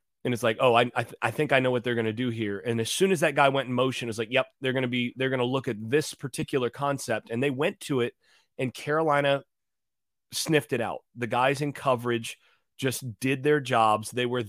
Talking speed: 255 wpm